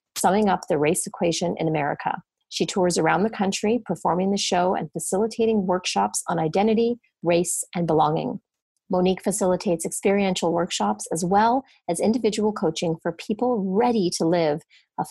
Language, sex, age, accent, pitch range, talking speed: English, female, 40-59, American, 170-220 Hz, 150 wpm